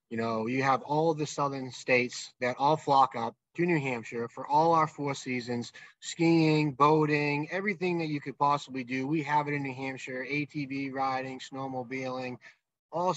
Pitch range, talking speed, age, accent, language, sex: 130-150 Hz, 175 wpm, 20-39, American, English, male